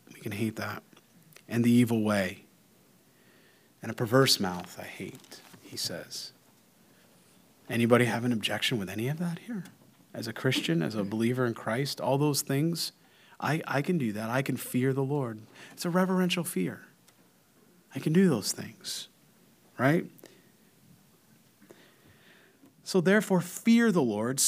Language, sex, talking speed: English, male, 145 wpm